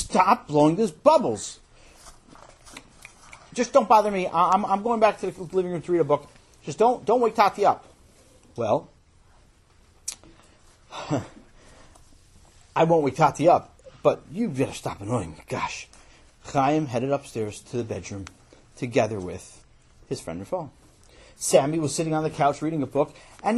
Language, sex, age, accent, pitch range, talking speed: English, male, 40-59, American, 120-180 Hz, 155 wpm